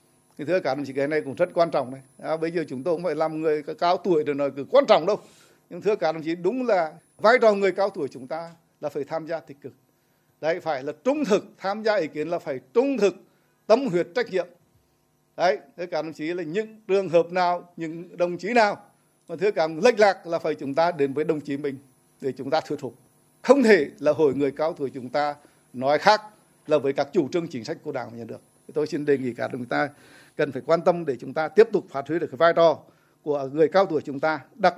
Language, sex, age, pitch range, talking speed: Vietnamese, male, 60-79, 145-180 Hz, 260 wpm